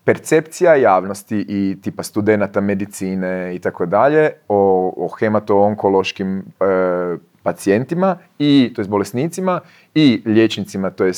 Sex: male